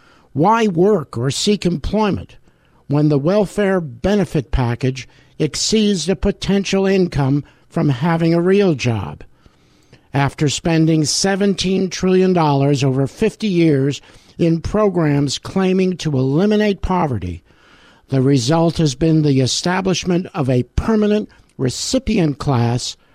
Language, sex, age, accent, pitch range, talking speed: English, male, 60-79, American, 140-185 Hz, 110 wpm